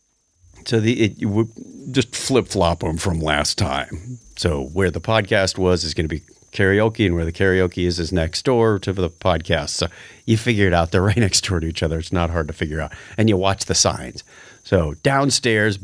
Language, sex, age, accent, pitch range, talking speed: English, male, 40-59, American, 90-115 Hz, 215 wpm